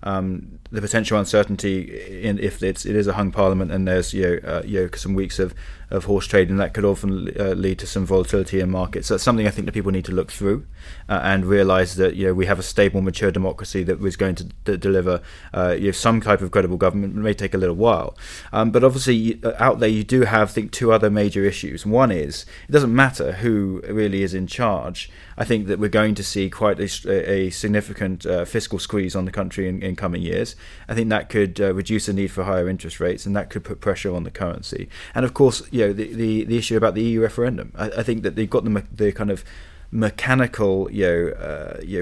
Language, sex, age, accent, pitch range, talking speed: English, male, 20-39, British, 95-110 Hz, 245 wpm